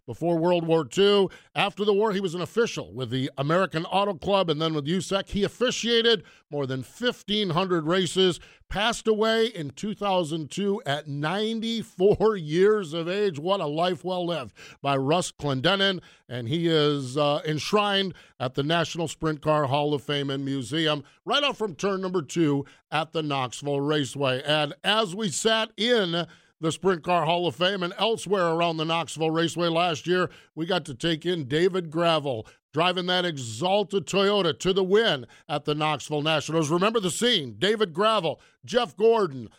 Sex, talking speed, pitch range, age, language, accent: male, 170 wpm, 155-205 Hz, 50-69, English, American